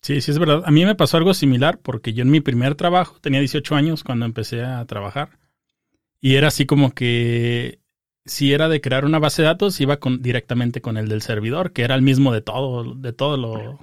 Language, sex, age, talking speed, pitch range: Spanish, male, 30-49, 220 wpm, 125-155 Hz